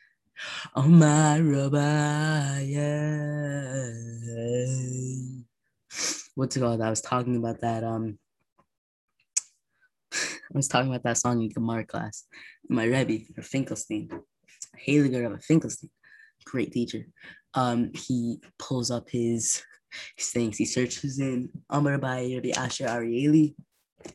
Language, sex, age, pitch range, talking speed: English, female, 20-39, 120-145 Hz, 110 wpm